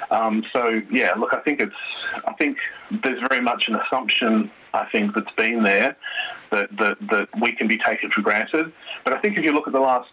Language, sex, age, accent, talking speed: English, male, 40-59, Australian, 215 wpm